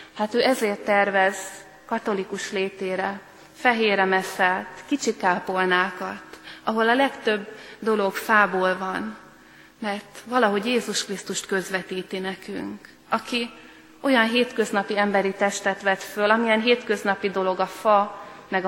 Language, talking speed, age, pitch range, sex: Hungarian, 110 wpm, 30-49, 190-220 Hz, female